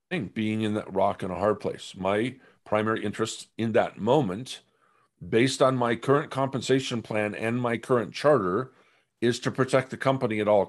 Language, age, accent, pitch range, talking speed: English, 50-69, American, 120-155 Hz, 175 wpm